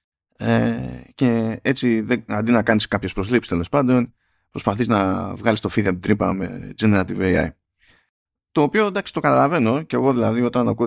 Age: 20-39